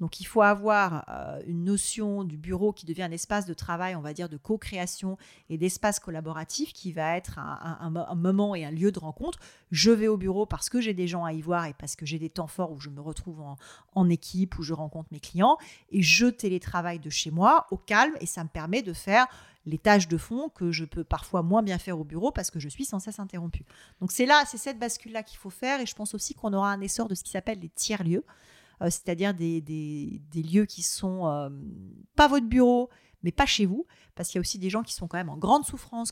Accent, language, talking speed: French, French, 255 wpm